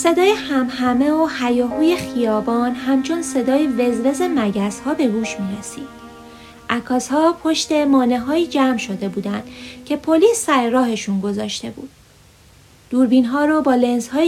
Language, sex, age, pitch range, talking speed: Persian, female, 30-49, 215-285 Hz, 125 wpm